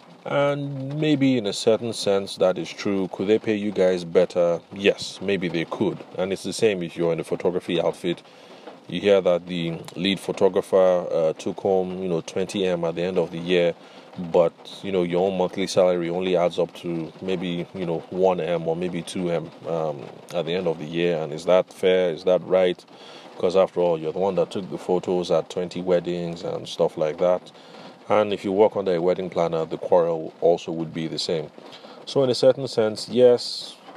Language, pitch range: English, 90-110 Hz